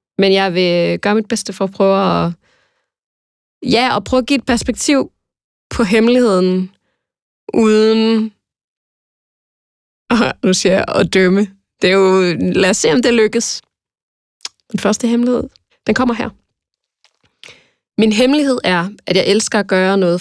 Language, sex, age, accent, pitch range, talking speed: Danish, female, 20-39, native, 180-225 Hz, 150 wpm